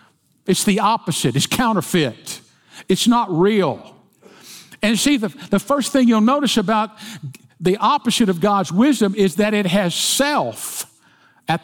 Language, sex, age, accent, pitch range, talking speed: English, male, 50-69, American, 150-205 Hz, 145 wpm